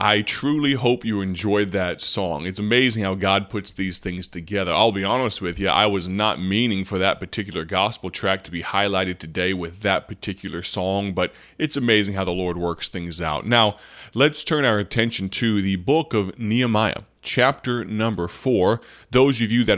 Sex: male